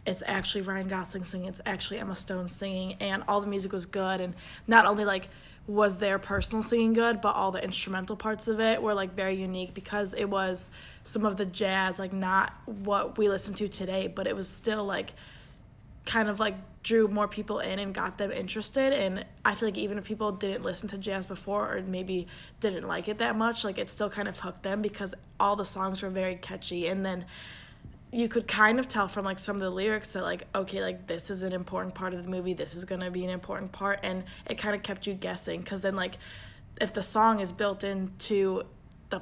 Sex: female